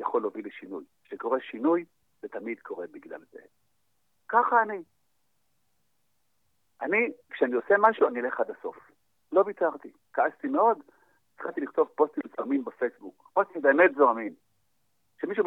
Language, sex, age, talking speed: Hebrew, male, 50-69, 130 wpm